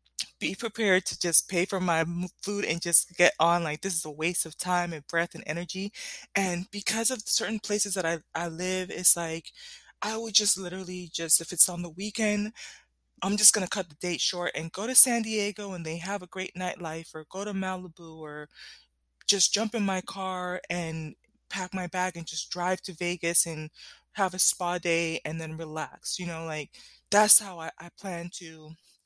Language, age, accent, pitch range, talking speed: English, 20-39, American, 170-230 Hz, 205 wpm